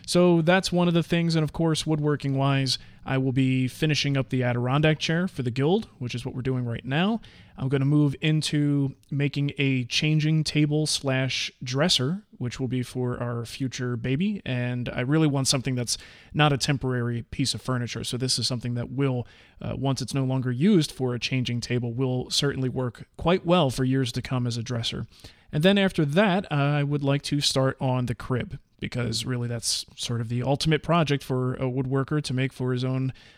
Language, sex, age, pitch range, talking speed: English, male, 30-49, 125-155 Hz, 205 wpm